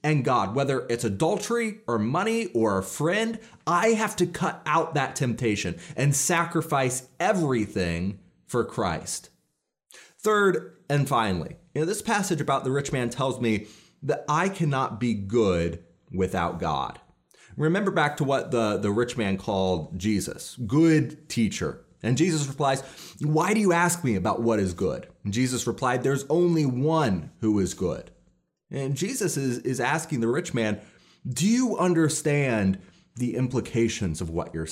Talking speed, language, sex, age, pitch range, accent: 155 wpm, English, male, 30-49, 110-160 Hz, American